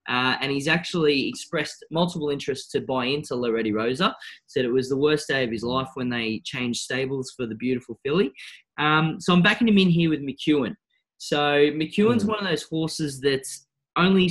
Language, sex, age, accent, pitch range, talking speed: English, male, 20-39, Australian, 125-160 Hz, 195 wpm